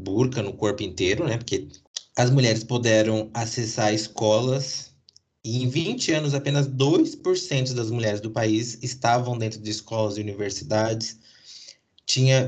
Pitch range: 105-125 Hz